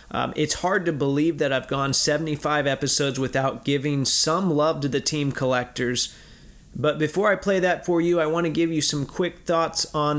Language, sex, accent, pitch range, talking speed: English, male, American, 130-155 Hz, 200 wpm